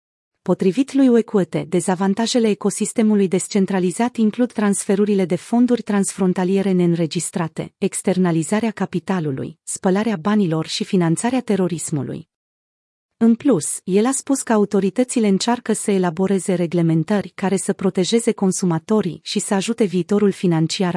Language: Romanian